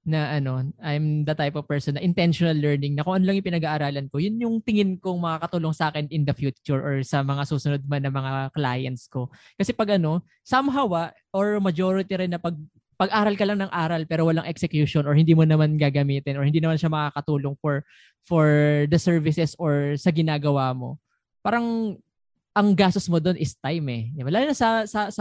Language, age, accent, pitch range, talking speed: Filipino, 20-39, native, 145-190 Hz, 200 wpm